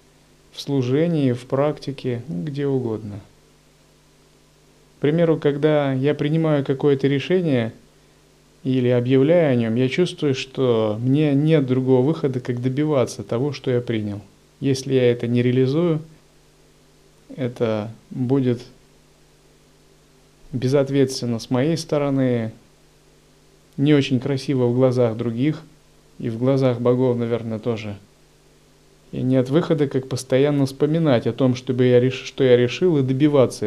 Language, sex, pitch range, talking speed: Russian, male, 115-145 Hz, 120 wpm